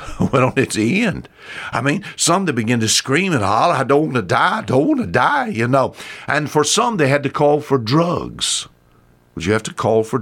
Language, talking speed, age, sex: English, 235 wpm, 60-79, male